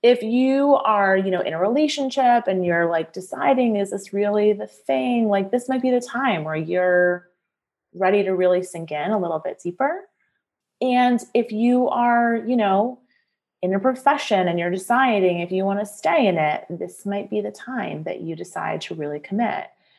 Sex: female